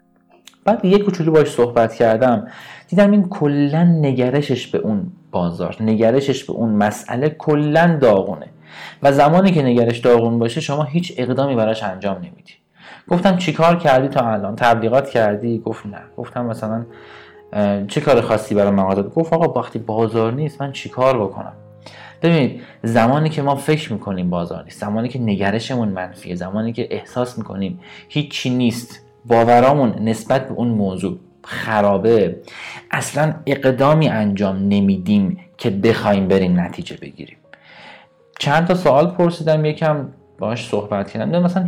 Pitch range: 110-155 Hz